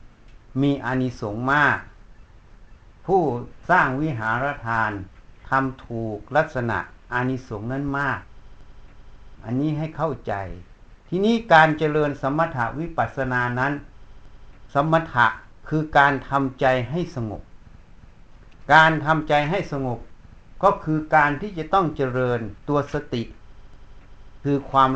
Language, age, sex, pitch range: Thai, 60-79, male, 110-150 Hz